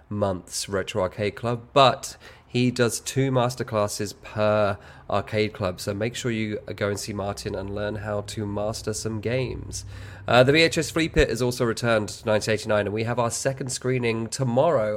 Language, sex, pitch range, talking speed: English, male, 105-135 Hz, 175 wpm